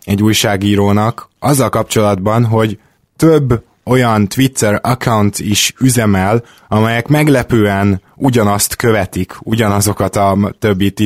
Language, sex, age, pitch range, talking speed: Hungarian, male, 20-39, 100-115 Hz, 105 wpm